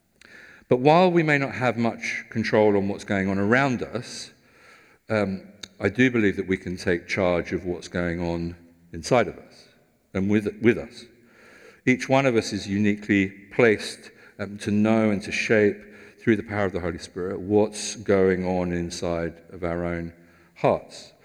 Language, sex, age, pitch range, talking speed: English, male, 50-69, 90-115 Hz, 175 wpm